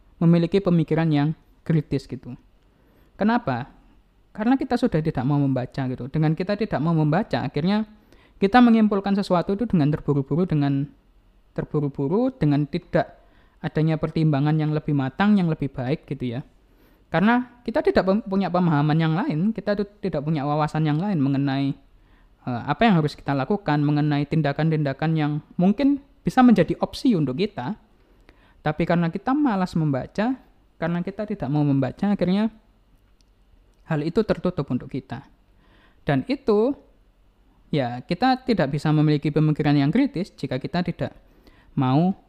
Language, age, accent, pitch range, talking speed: Indonesian, 20-39, native, 140-195 Hz, 140 wpm